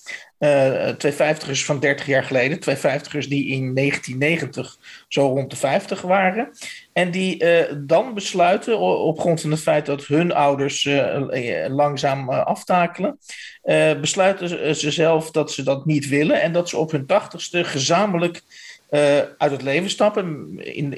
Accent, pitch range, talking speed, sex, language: Dutch, 140-175 Hz, 160 wpm, male, Dutch